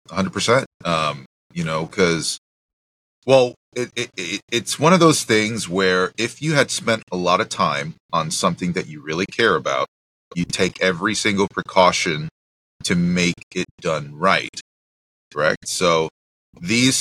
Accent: American